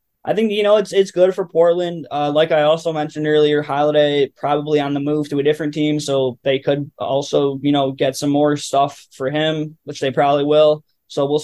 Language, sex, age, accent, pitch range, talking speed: English, male, 10-29, American, 140-155 Hz, 220 wpm